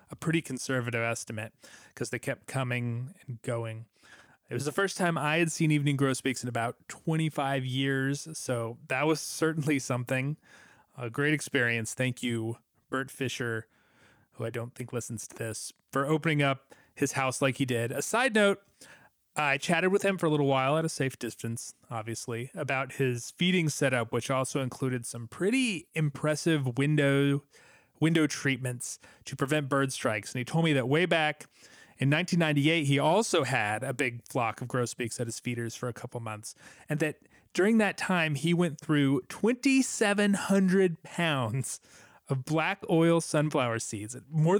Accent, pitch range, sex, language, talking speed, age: American, 125-160 Hz, male, English, 165 wpm, 30-49